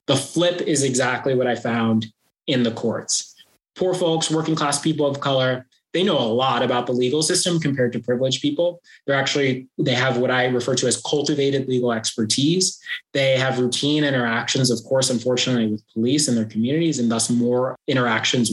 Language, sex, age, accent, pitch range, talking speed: English, male, 20-39, American, 115-145 Hz, 185 wpm